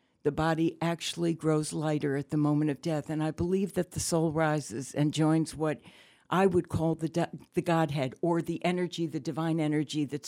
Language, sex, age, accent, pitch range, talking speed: English, female, 60-79, American, 160-200 Hz, 200 wpm